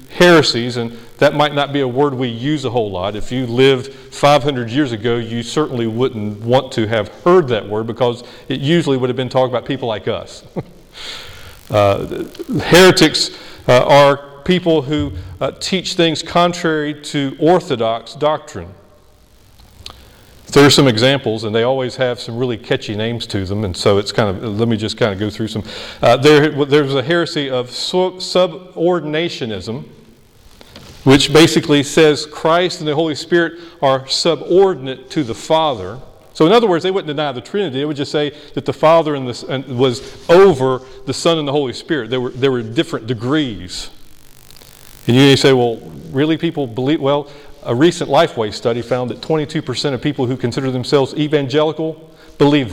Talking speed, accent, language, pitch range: 175 wpm, American, English, 120-155 Hz